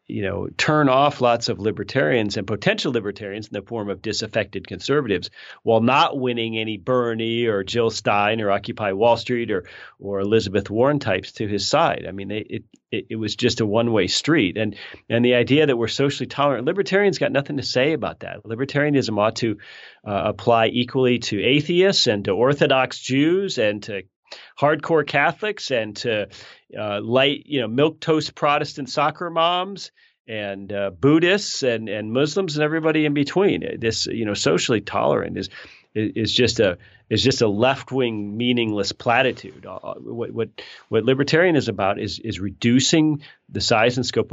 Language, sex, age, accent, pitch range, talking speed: English, male, 40-59, American, 105-140 Hz, 170 wpm